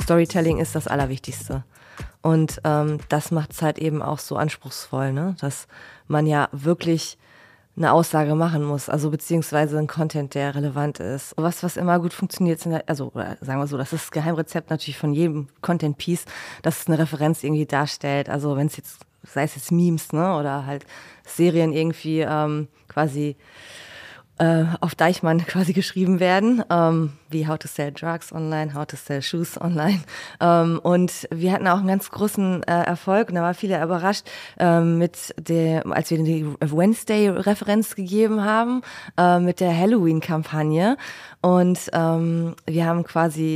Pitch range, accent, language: 155-180 Hz, German, German